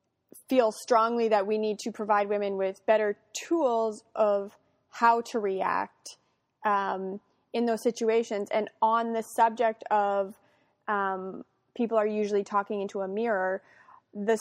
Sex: female